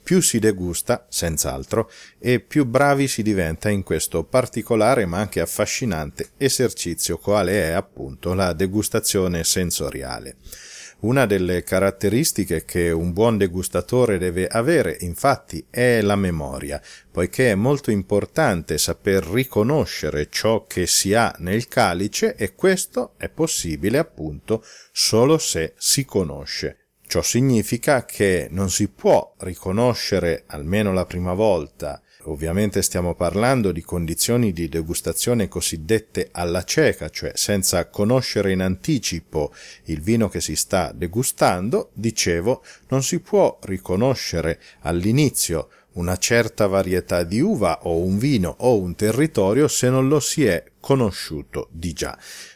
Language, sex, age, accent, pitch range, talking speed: Italian, male, 40-59, native, 85-120 Hz, 130 wpm